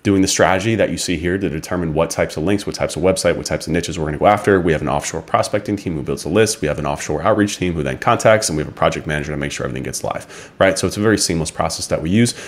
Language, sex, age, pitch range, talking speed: English, male, 30-49, 80-95 Hz, 320 wpm